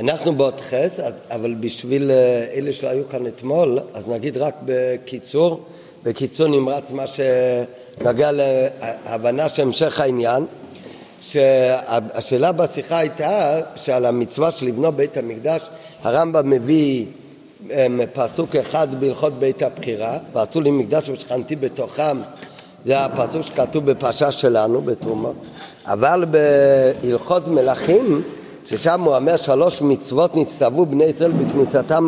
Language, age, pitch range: Hebrew, 50-69, 130-165 Hz